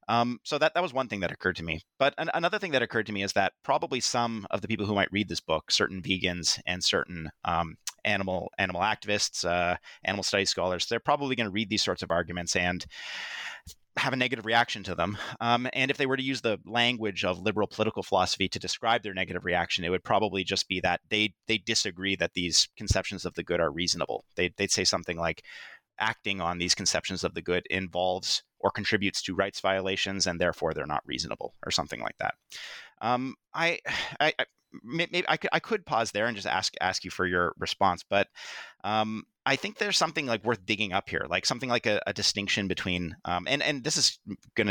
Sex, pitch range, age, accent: male, 90-115 Hz, 30-49, American